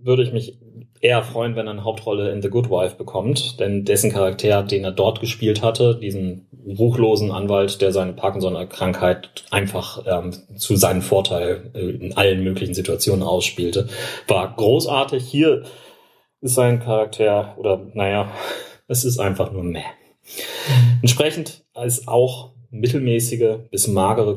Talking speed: 145 wpm